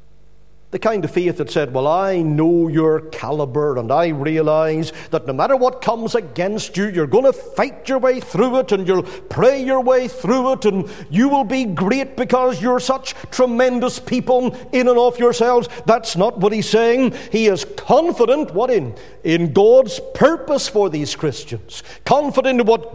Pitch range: 165-250 Hz